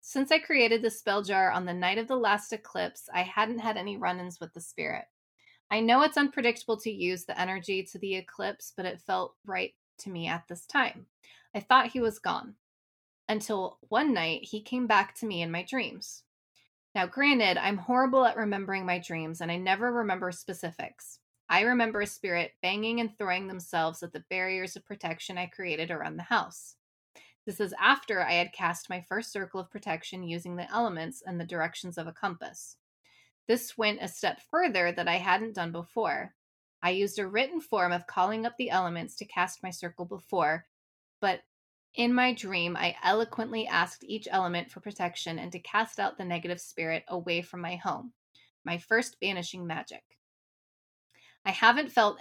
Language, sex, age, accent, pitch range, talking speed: English, female, 20-39, American, 175-225 Hz, 185 wpm